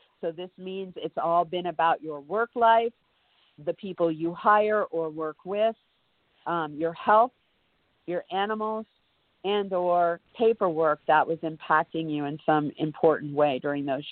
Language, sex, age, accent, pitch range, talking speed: English, female, 50-69, American, 165-210 Hz, 150 wpm